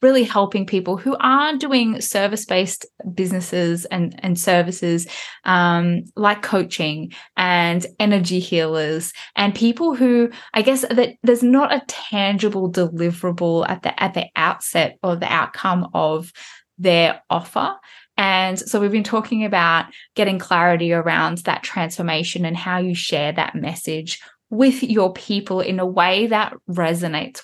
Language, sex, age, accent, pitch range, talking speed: English, female, 10-29, Australian, 175-220 Hz, 140 wpm